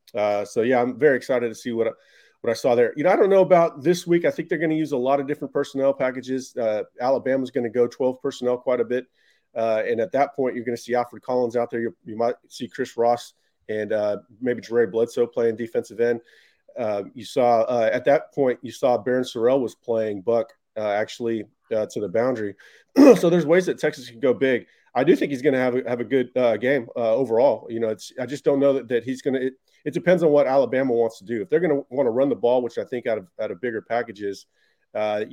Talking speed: 265 wpm